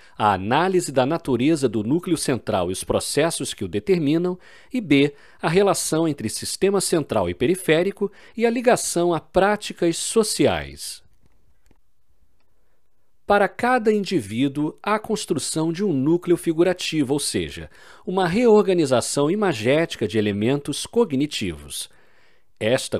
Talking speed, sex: 125 wpm, male